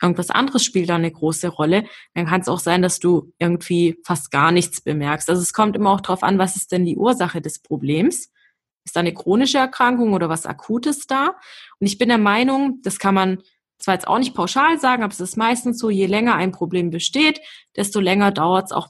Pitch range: 175-210 Hz